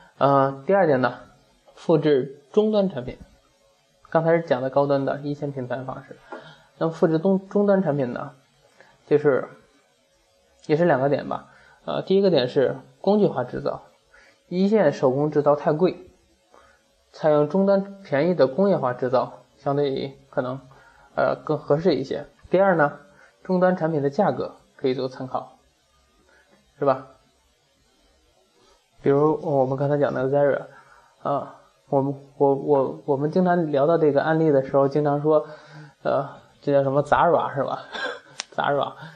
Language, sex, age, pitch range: Chinese, male, 20-39, 135-175 Hz